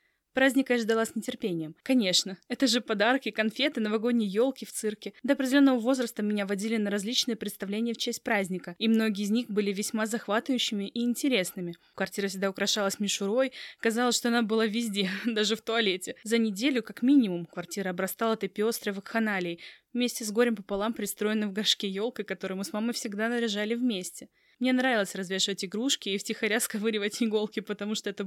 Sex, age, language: female, 20-39, Russian